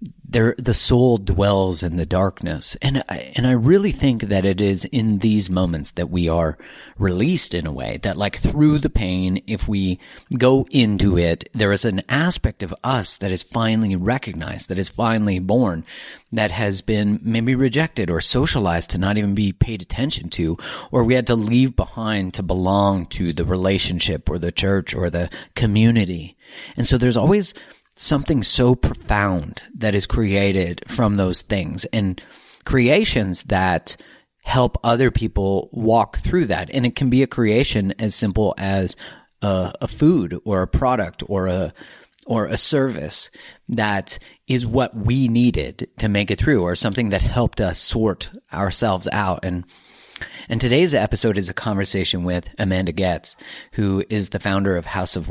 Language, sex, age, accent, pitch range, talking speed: English, male, 30-49, American, 95-120 Hz, 170 wpm